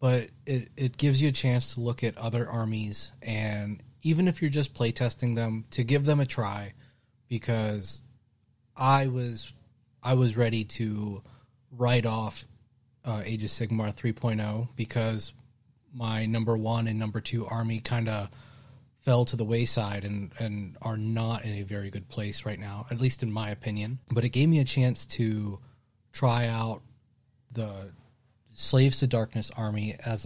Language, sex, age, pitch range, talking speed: English, male, 20-39, 110-125 Hz, 165 wpm